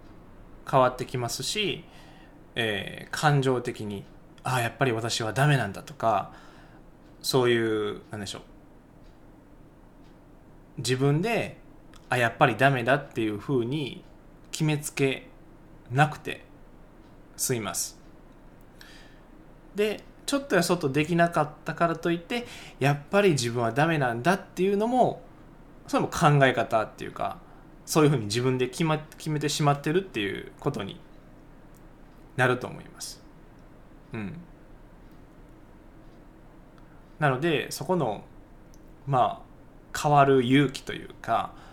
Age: 20-39